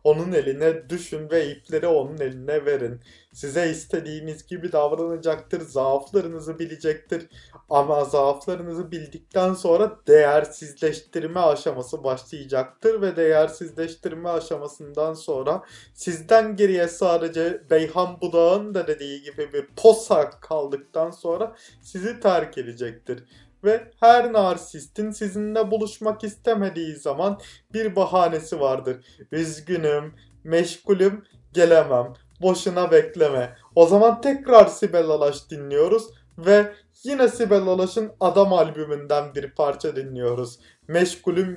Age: 30-49